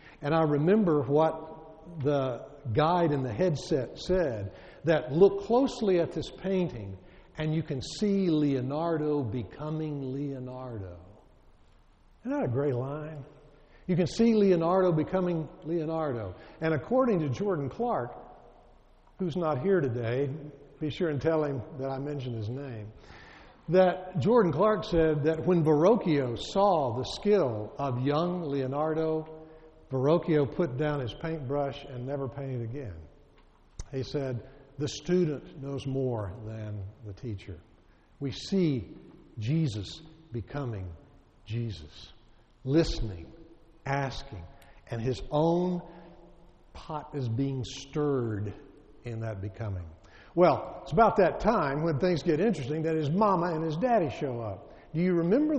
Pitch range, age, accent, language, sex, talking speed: 125-165 Hz, 60-79, American, English, male, 130 wpm